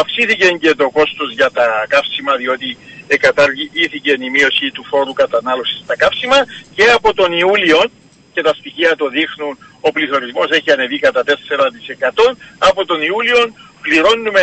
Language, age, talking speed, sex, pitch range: Greek, 50-69, 150 wpm, male, 155-250 Hz